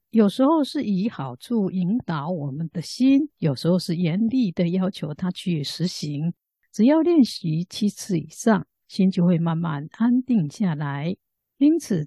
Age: 50-69